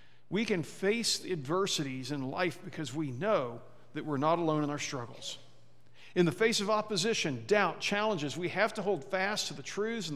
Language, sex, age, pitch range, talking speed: English, male, 50-69, 150-205 Hz, 190 wpm